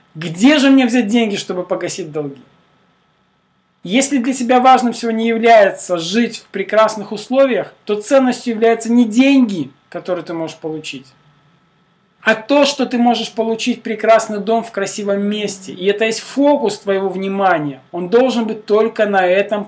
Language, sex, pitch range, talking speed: Russian, male, 180-235 Hz, 155 wpm